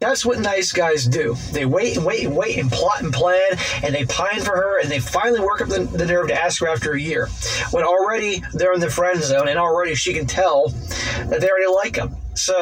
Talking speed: 245 wpm